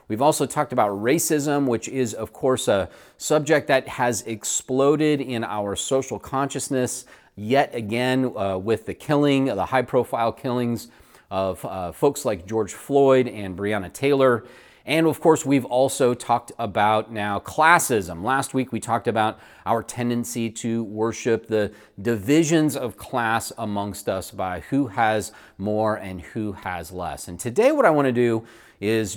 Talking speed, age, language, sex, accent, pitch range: 160 wpm, 30-49, English, male, American, 105-135 Hz